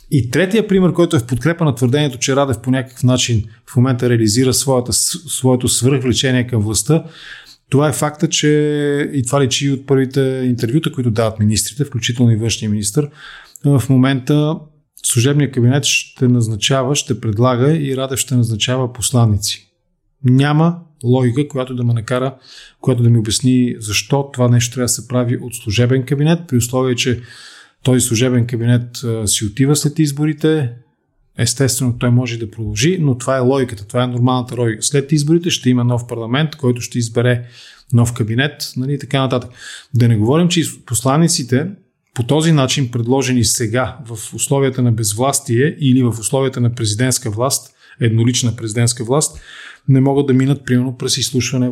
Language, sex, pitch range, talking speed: Bulgarian, male, 120-140 Hz, 165 wpm